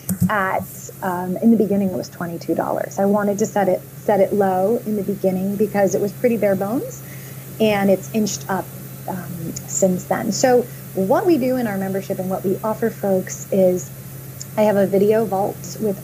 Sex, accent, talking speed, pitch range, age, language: female, American, 190 wpm, 185-230 Hz, 30-49, English